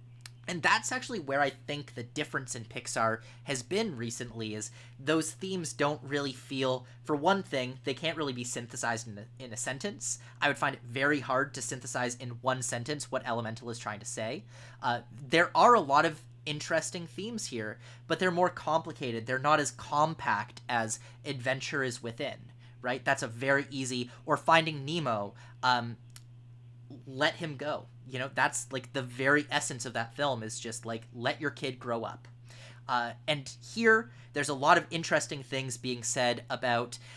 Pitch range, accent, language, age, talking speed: 120-150 Hz, American, English, 30-49, 180 wpm